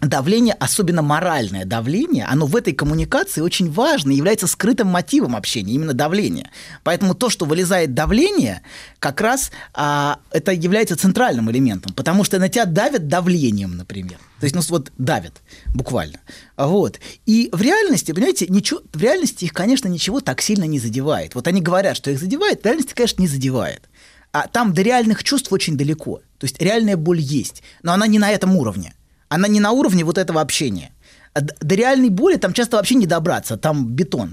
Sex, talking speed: male, 180 wpm